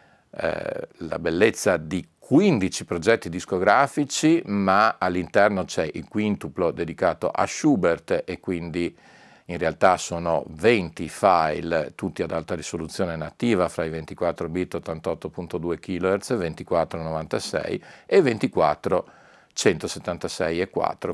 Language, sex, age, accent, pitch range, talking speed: Italian, male, 50-69, native, 85-100 Hz, 105 wpm